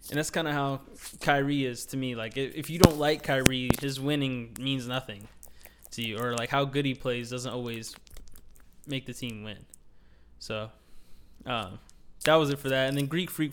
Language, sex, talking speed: English, male, 195 wpm